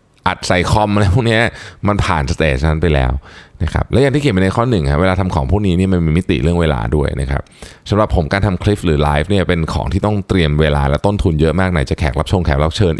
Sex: male